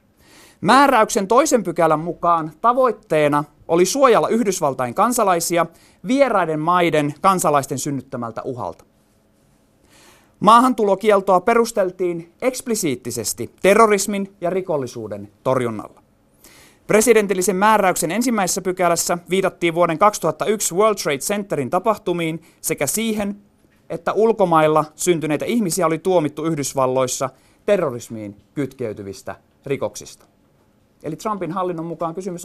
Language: Finnish